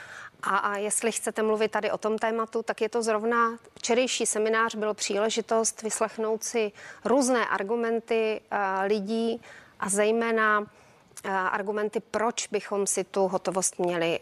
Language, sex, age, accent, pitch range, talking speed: Czech, female, 30-49, native, 195-235 Hz, 140 wpm